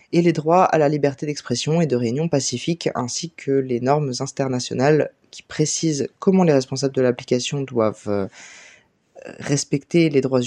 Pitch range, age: 130-160 Hz, 20-39